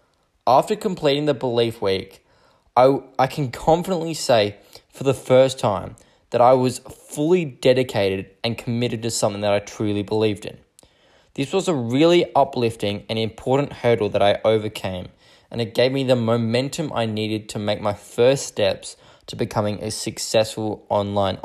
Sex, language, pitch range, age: male, English, 105-135 Hz, 10-29